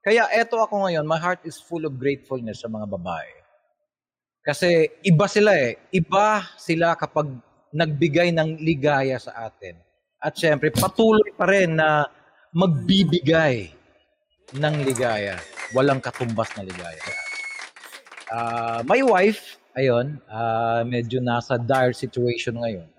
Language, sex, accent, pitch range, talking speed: Filipino, male, native, 120-165 Hz, 130 wpm